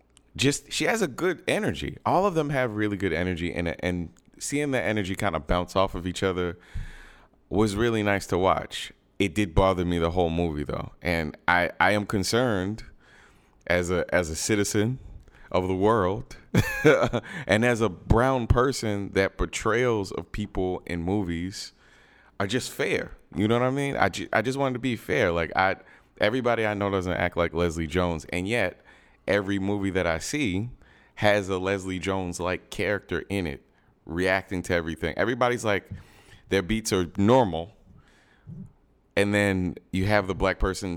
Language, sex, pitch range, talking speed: English, male, 90-115 Hz, 175 wpm